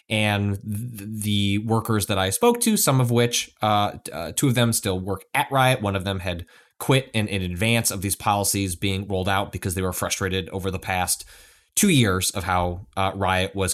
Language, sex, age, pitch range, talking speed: English, male, 20-39, 95-115 Hz, 205 wpm